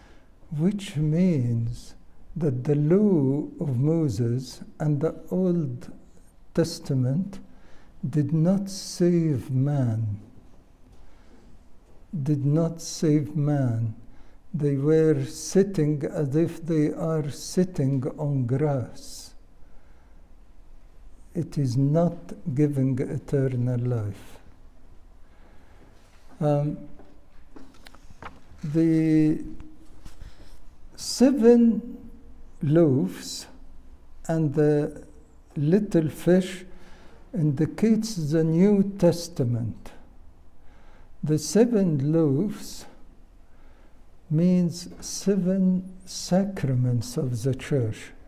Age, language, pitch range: 60-79, English, 125-170 Hz